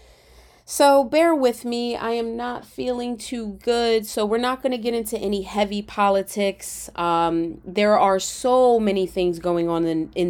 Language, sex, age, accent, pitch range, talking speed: English, female, 20-39, American, 170-220 Hz, 170 wpm